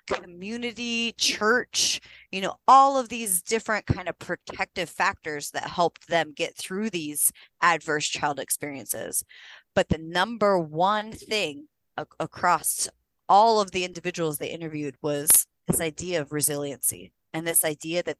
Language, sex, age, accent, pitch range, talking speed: English, female, 30-49, American, 155-200 Hz, 140 wpm